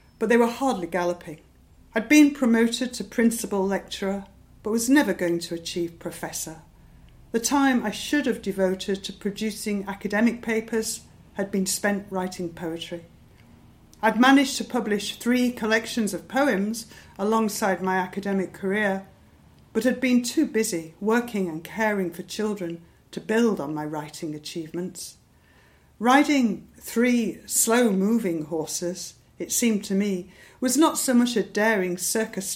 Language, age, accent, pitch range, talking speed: English, 50-69, British, 180-230 Hz, 140 wpm